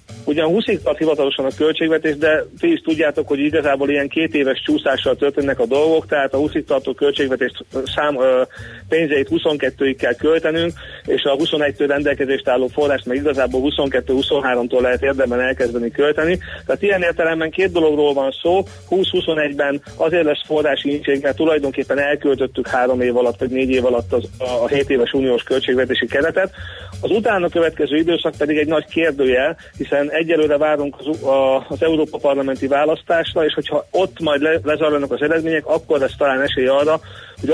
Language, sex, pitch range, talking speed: Hungarian, male, 135-155 Hz, 160 wpm